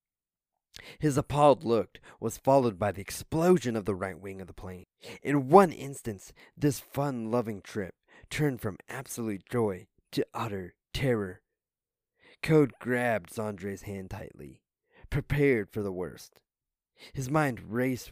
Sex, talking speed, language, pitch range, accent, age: male, 135 wpm, English, 95-125 Hz, American, 20-39